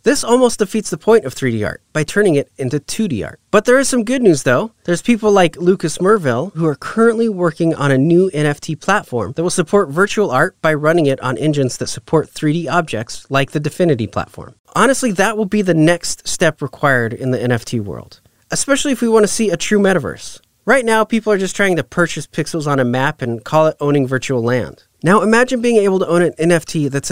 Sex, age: male, 30-49